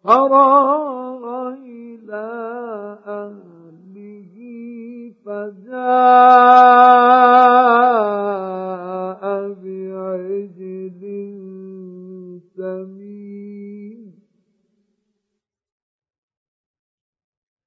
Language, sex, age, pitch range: Arabic, male, 50-69, 195-250 Hz